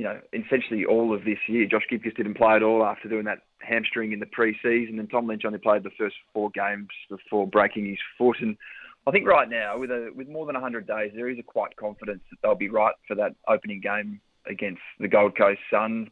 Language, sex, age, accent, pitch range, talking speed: English, male, 20-39, Australian, 105-120 Hz, 235 wpm